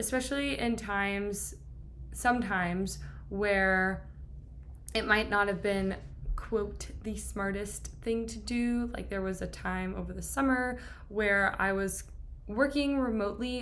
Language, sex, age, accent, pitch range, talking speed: English, female, 20-39, American, 190-235 Hz, 130 wpm